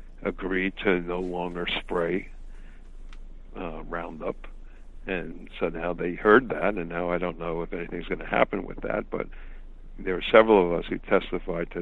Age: 60-79